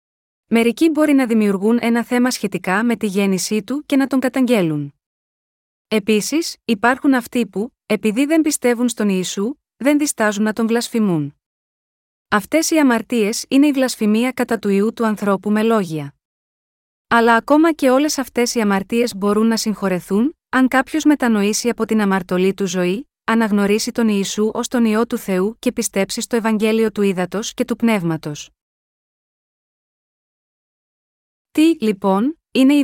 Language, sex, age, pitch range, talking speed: Greek, female, 20-39, 200-250 Hz, 150 wpm